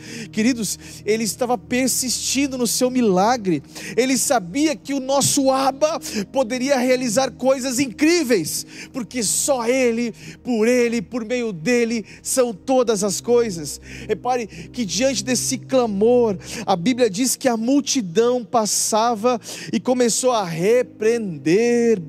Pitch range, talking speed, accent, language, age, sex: 205-250 Hz, 120 wpm, Brazilian, Portuguese, 40-59, male